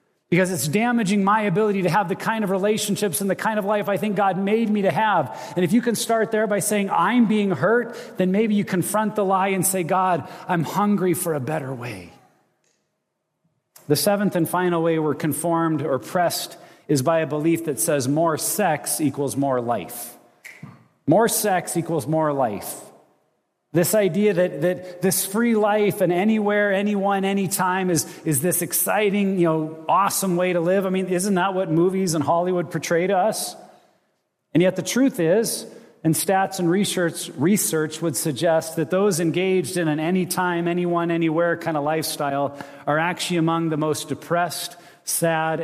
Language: English